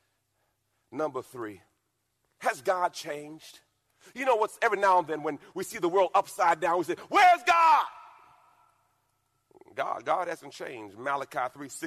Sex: male